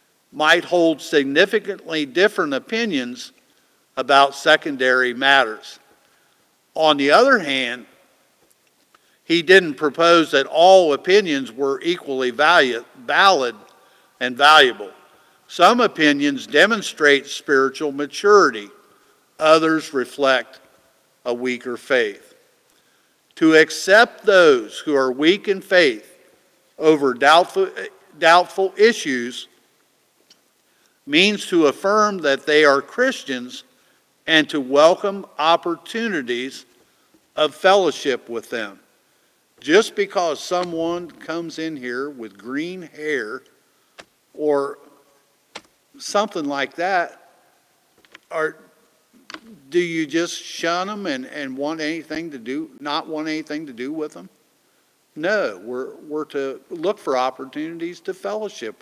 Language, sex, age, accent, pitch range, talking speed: English, male, 50-69, American, 140-205 Hz, 105 wpm